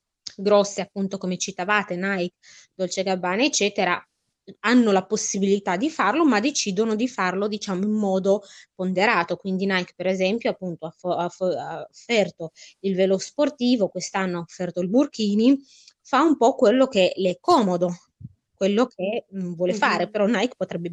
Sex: female